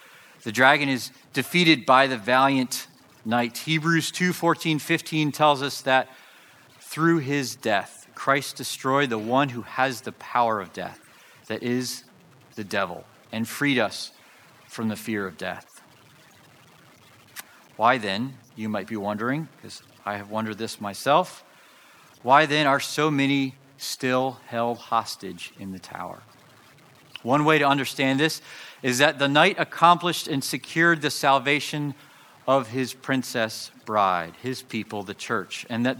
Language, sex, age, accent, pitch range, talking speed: English, male, 40-59, American, 110-140 Hz, 145 wpm